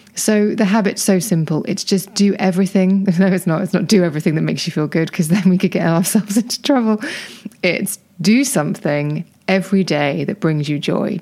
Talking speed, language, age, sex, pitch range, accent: 205 wpm, English, 20-39, female, 160-195 Hz, British